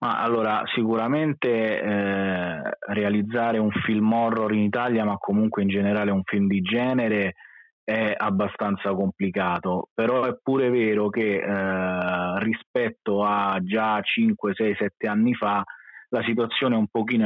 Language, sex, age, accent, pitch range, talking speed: Italian, male, 20-39, native, 100-115 Hz, 135 wpm